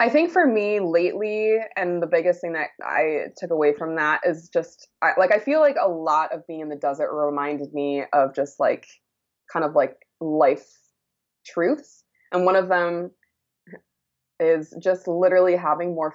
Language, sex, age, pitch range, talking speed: English, female, 20-39, 150-195 Hz, 175 wpm